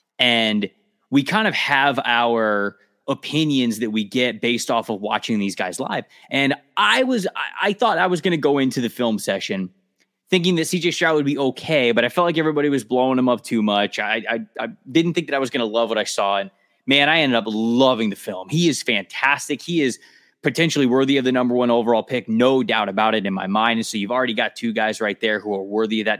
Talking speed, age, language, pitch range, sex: 240 wpm, 20-39, English, 110-140 Hz, male